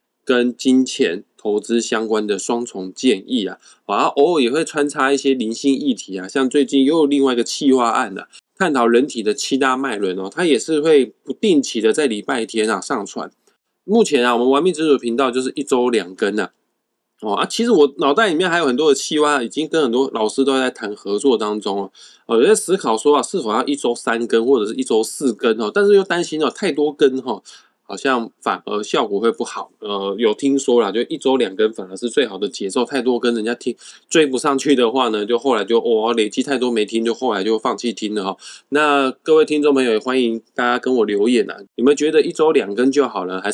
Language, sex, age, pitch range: Chinese, male, 20-39, 110-145 Hz